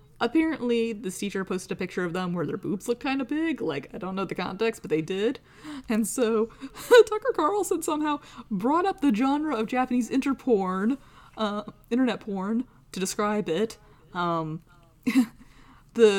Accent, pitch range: American, 165-235 Hz